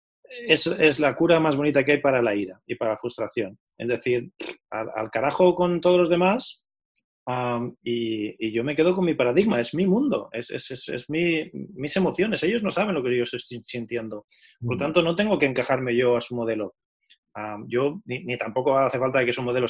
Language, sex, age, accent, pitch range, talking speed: Spanish, male, 20-39, Spanish, 125-155 Hz, 220 wpm